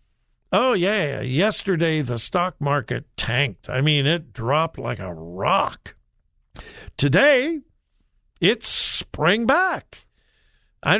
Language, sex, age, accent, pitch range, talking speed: English, male, 60-79, American, 130-185 Hz, 105 wpm